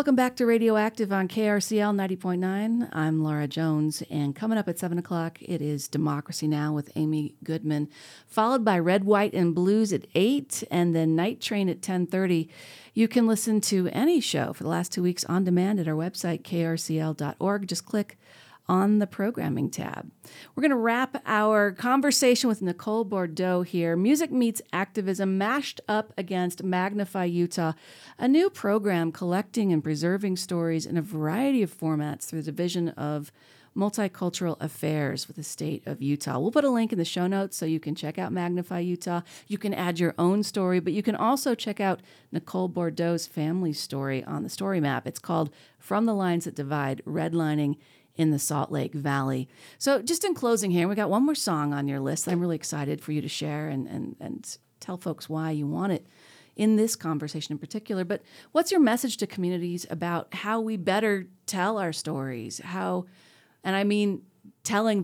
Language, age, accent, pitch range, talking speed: English, 40-59, American, 160-210 Hz, 185 wpm